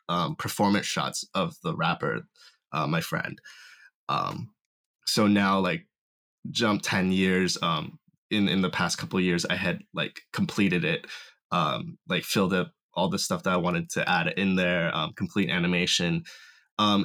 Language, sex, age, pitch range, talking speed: English, male, 20-39, 95-130 Hz, 160 wpm